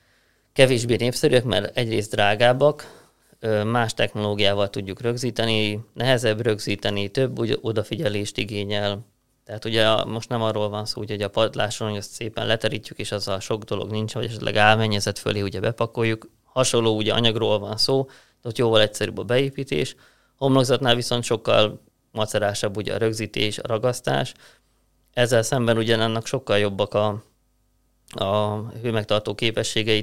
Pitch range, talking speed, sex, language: 105-115 Hz, 140 wpm, male, Hungarian